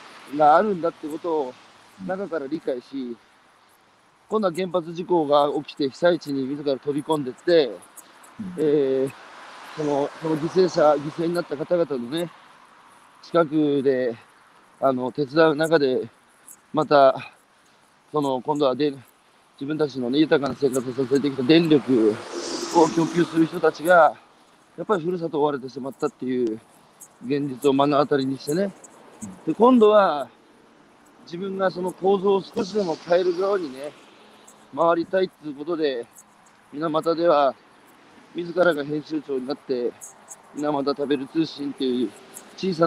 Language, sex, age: Japanese, male, 40-59